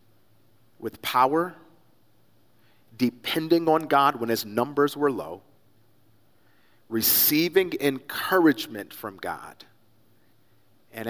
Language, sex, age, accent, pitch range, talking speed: English, male, 40-59, American, 110-130 Hz, 80 wpm